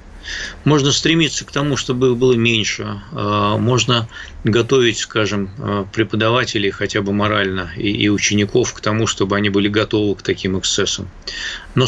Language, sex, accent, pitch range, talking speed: Russian, male, native, 100-120 Hz, 130 wpm